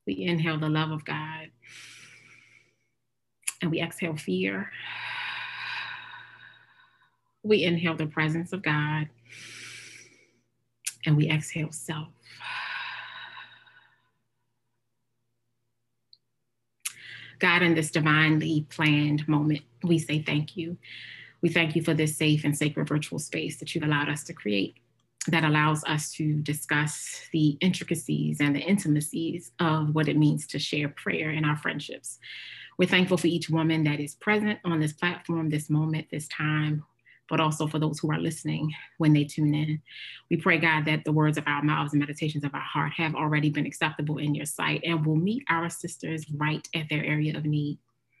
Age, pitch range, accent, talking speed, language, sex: 30-49, 145-165 Hz, American, 155 wpm, English, female